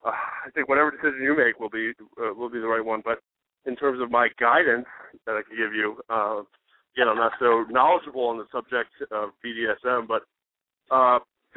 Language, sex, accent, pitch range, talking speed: English, male, American, 115-145 Hz, 205 wpm